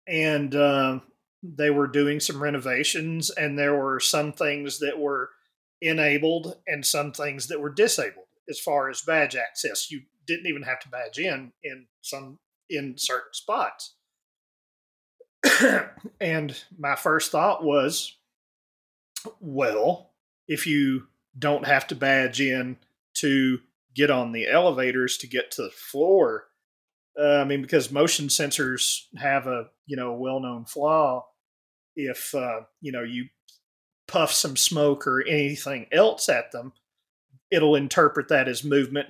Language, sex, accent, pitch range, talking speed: English, male, American, 130-150 Hz, 140 wpm